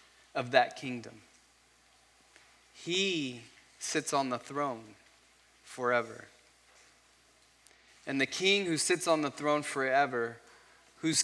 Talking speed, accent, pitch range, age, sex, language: 100 wpm, American, 120-155 Hz, 20-39, male, English